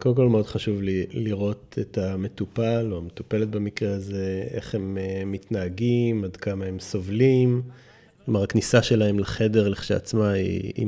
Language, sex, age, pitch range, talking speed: Hebrew, male, 30-49, 95-120 Hz, 145 wpm